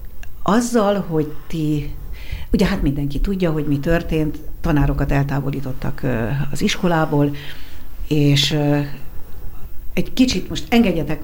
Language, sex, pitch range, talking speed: Hungarian, female, 135-155 Hz, 100 wpm